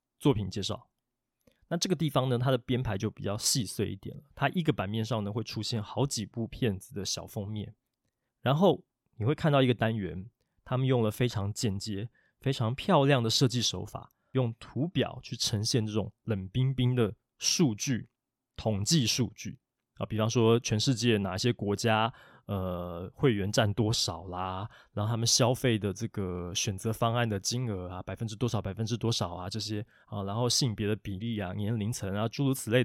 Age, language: 20-39, Chinese